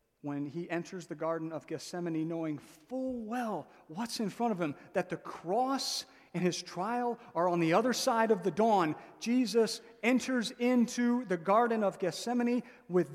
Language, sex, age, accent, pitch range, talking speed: English, male, 40-59, American, 150-220 Hz, 170 wpm